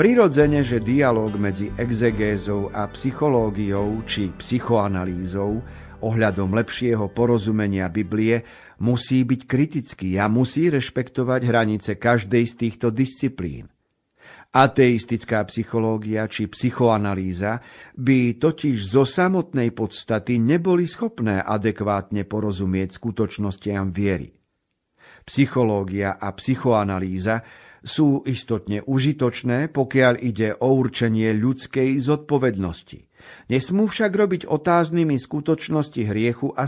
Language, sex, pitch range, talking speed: Slovak, male, 105-135 Hz, 95 wpm